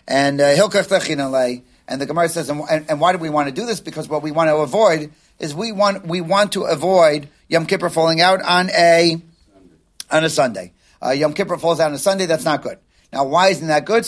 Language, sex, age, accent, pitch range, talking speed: English, male, 40-59, American, 145-180 Hz, 230 wpm